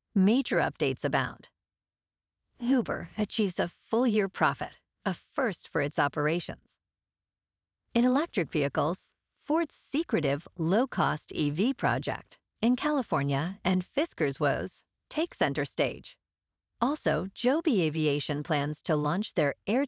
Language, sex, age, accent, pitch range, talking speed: English, female, 50-69, American, 145-230 Hz, 115 wpm